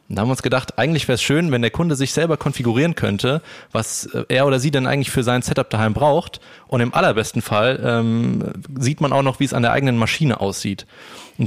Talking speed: 235 wpm